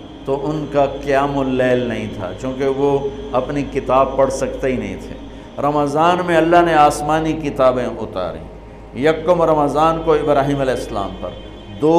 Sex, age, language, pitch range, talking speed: male, 50-69, Urdu, 120-150 Hz, 155 wpm